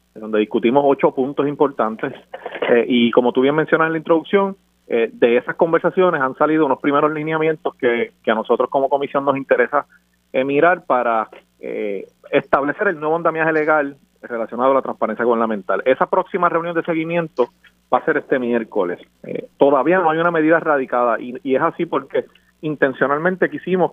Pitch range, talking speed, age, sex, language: 125-170 Hz, 175 wpm, 30-49, male, Spanish